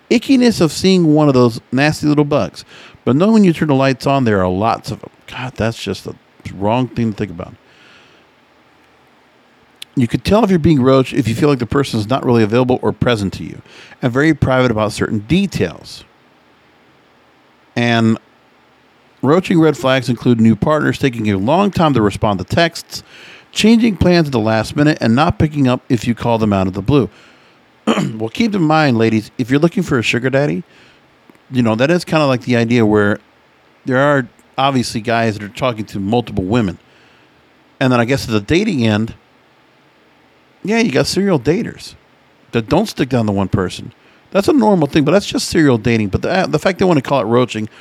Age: 50-69